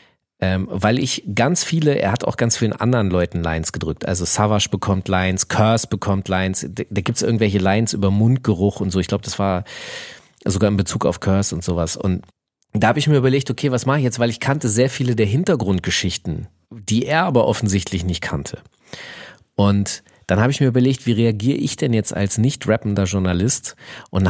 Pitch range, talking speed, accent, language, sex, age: 95-120 Hz, 200 wpm, German, German, male, 40-59